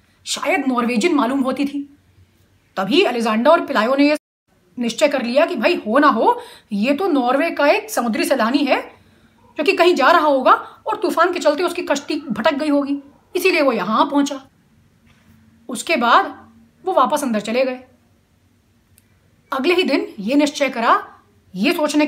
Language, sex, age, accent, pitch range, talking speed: Hindi, female, 30-49, native, 235-310 Hz, 160 wpm